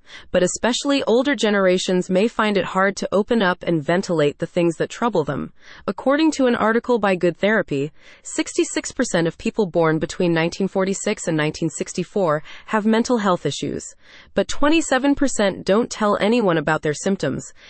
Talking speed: 155 wpm